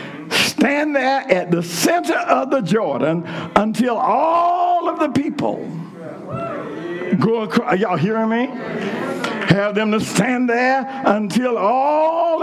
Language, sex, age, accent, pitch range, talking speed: English, male, 60-79, American, 190-260 Hz, 125 wpm